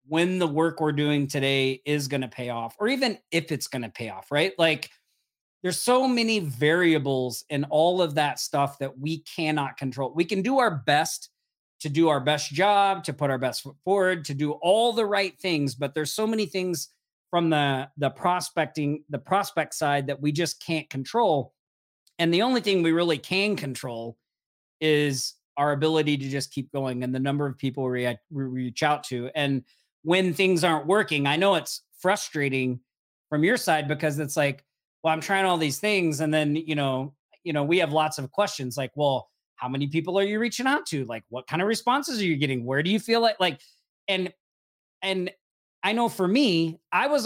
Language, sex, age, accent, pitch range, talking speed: English, male, 40-59, American, 140-185 Hz, 205 wpm